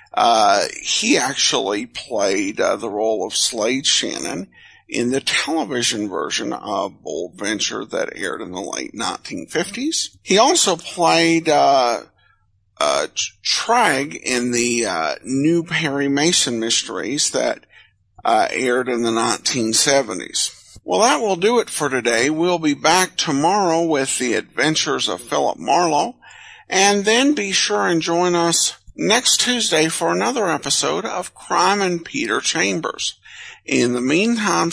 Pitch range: 140-205 Hz